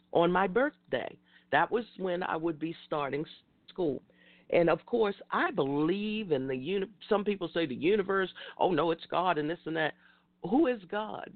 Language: English